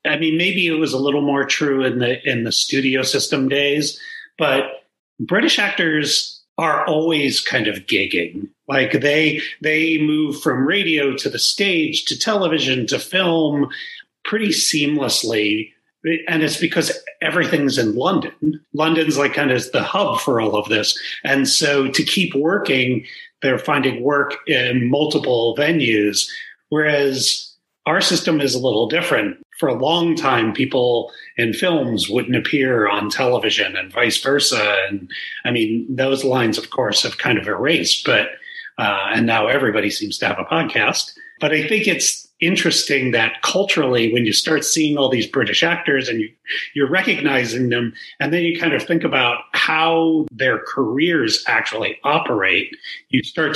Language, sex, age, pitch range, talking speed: English, male, 40-59, 130-165 Hz, 160 wpm